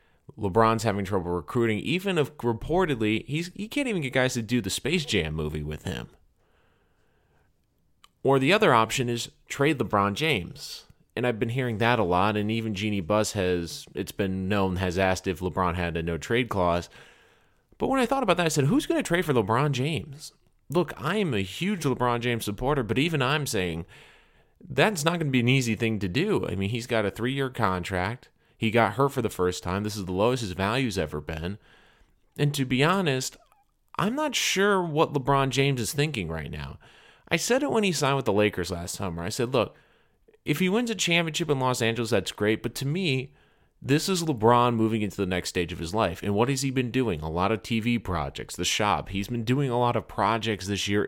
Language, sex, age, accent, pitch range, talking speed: English, male, 30-49, American, 95-140 Hz, 215 wpm